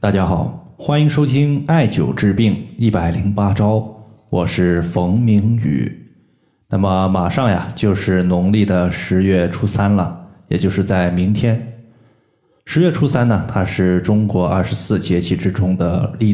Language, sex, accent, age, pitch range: Chinese, male, native, 20-39, 95-120 Hz